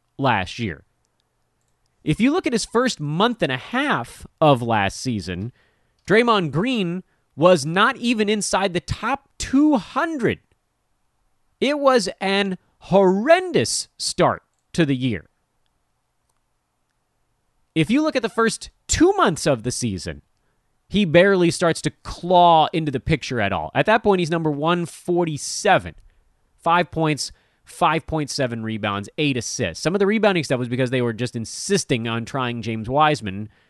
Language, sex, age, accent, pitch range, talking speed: English, male, 30-49, American, 125-195 Hz, 140 wpm